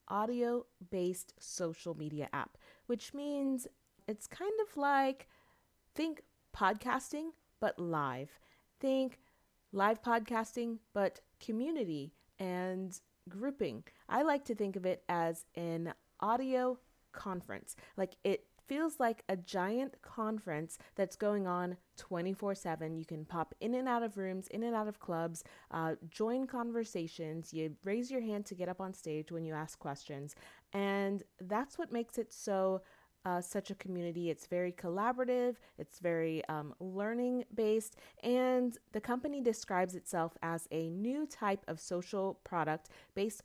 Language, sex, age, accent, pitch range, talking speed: English, female, 30-49, American, 170-235 Hz, 140 wpm